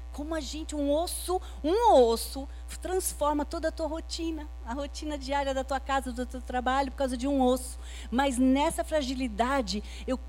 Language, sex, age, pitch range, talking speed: Portuguese, female, 40-59, 210-275 Hz, 175 wpm